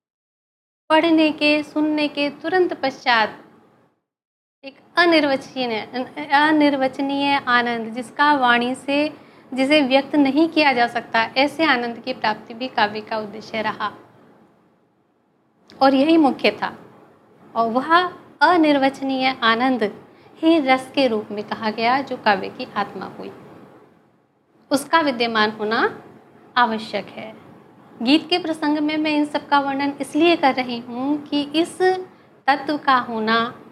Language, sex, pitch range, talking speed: Hindi, female, 240-295 Hz, 125 wpm